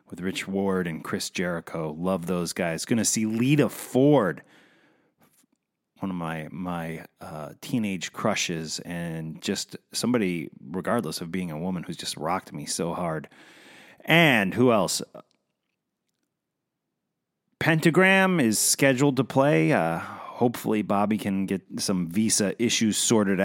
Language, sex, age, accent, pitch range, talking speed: English, male, 30-49, American, 95-120 Hz, 135 wpm